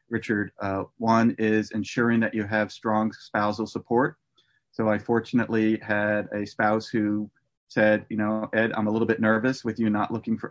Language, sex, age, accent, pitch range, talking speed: English, male, 30-49, American, 105-115 Hz, 185 wpm